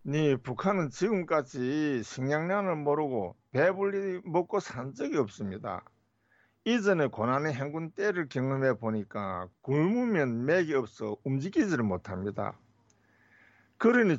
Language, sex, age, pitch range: Korean, male, 60-79, 115-175 Hz